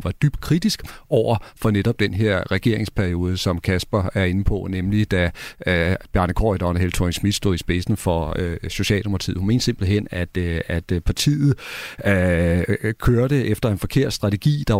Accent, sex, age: native, male, 40-59